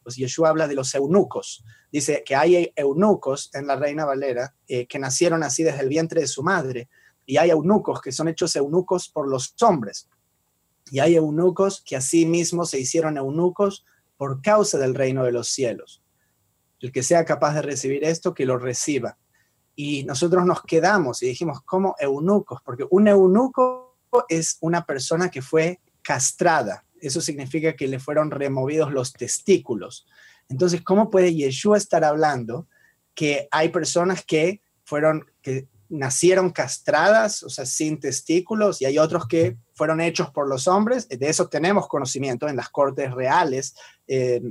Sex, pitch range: male, 135-175 Hz